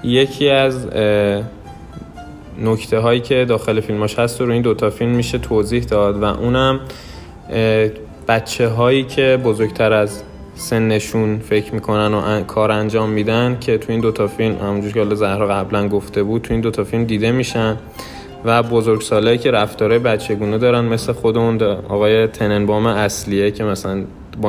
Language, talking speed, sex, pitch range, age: Persian, 160 wpm, male, 100-115 Hz, 20-39